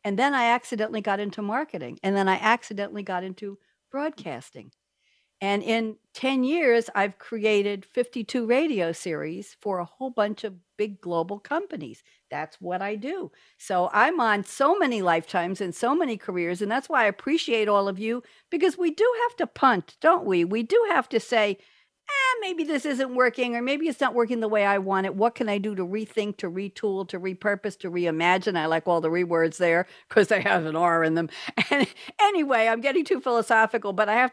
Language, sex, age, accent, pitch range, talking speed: English, female, 60-79, American, 175-235 Hz, 200 wpm